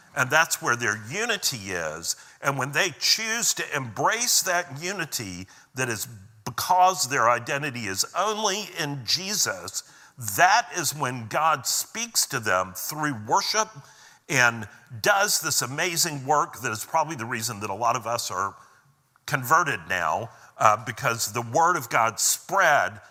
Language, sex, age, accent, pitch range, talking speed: English, male, 50-69, American, 110-165 Hz, 150 wpm